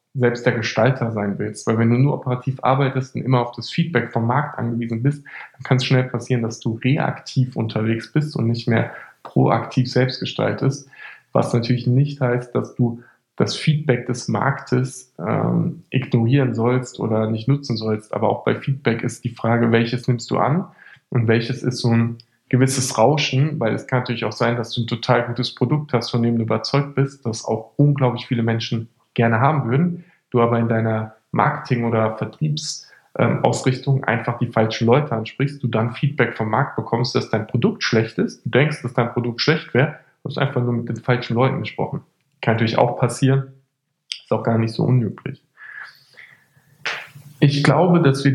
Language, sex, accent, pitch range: German, male, German, 115-135 Hz